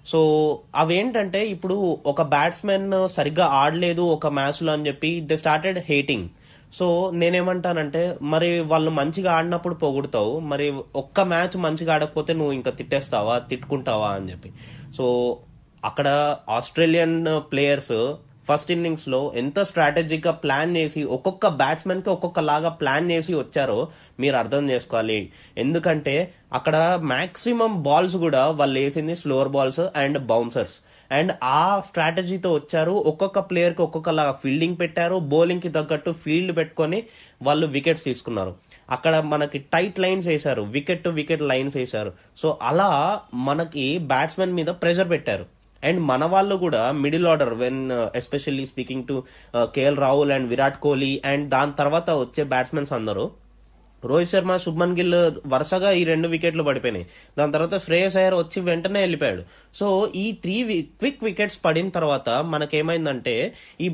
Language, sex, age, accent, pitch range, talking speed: Telugu, male, 20-39, native, 140-175 Hz, 135 wpm